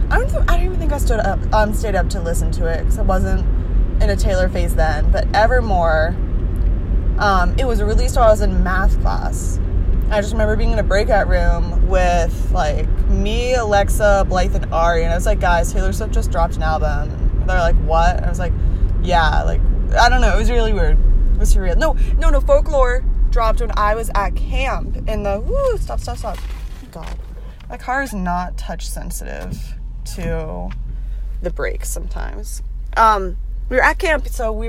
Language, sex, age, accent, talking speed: English, female, 20-39, American, 195 wpm